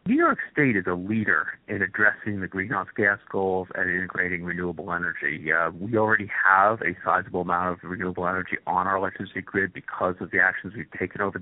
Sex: male